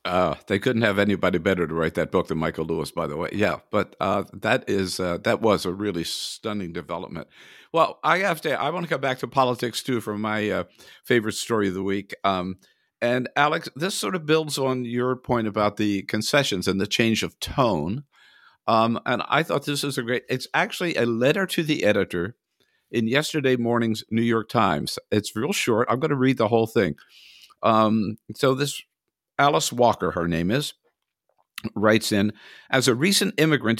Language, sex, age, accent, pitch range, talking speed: English, male, 60-79, American, 100-130 Hz, 200 wpm